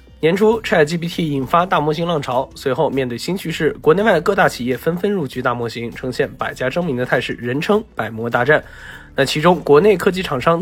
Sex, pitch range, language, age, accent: male, 130-170 Hz, Chinese, 20-39, native